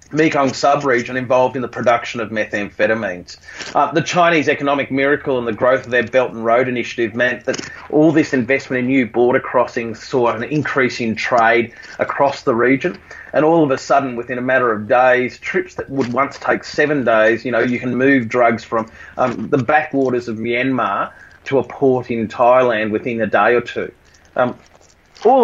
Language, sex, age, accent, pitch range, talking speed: English, male, 30-49, Australian, 120-150 Hz, 185 wpm